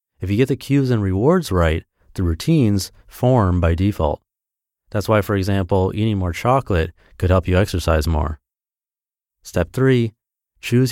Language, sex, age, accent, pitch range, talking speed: English, male, 30-49, American, 90-125 Hz, 155 wpm